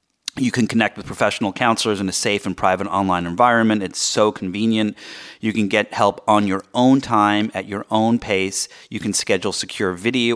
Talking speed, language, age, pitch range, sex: 190 wpm, English, 30-49, 95-110 Hz, male